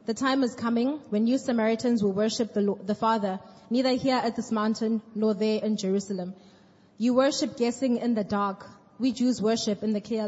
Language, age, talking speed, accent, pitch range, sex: English, 20-39, 195 wpm, South African, 200-235 Hz, female